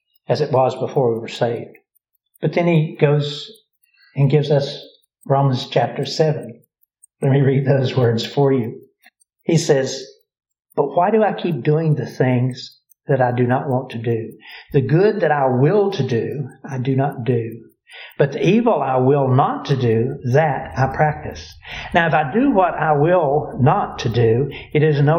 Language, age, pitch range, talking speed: English, 60-79, 125-150 Hz, 180 wpm